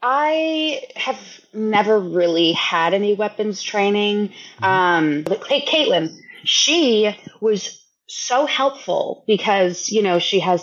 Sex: female